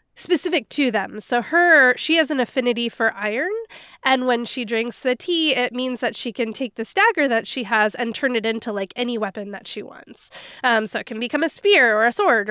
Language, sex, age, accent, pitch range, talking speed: English, female, 20-39, American, 220-285 Hz, 230 wpm